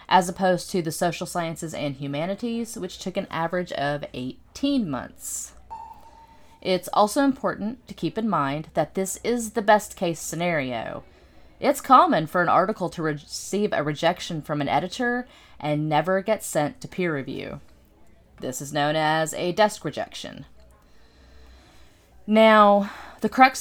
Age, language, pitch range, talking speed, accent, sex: 30-49, English, 150-195 Hz, 145 wpm, American, female